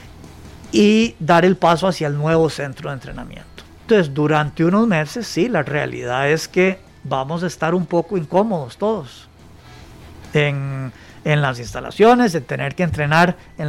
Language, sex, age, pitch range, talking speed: Spanish, male, 50-69, 140-185 Hz, 155 wpm